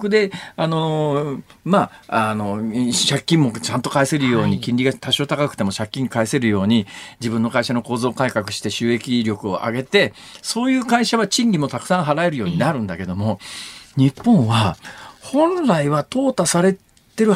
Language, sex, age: Japanese, male, 40-59